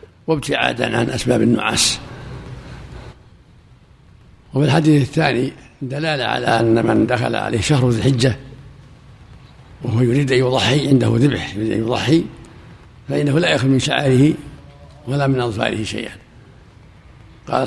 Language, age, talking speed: Arabic, 60-79, 115 wpm